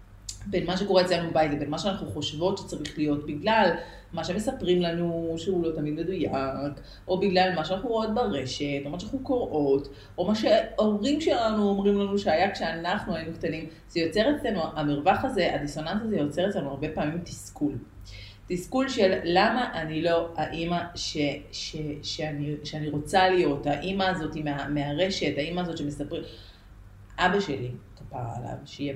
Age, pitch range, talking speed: 30-49, 135-195 Hz, 150 wpm